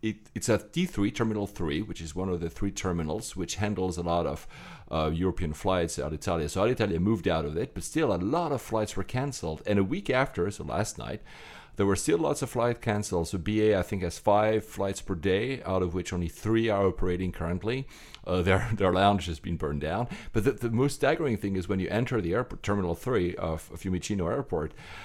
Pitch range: 90-115 Hz